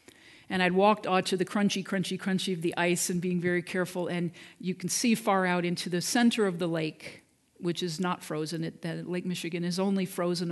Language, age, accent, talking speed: English, 50-69, American, 225 wpm